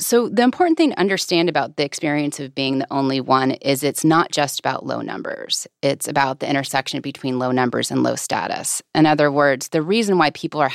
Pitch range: 135-165 Hz